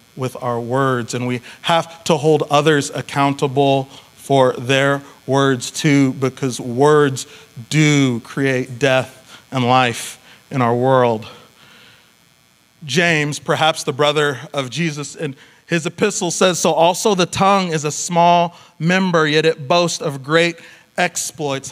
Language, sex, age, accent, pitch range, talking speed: English, male, 40-59, American, 130-155 Hz, 135 wpm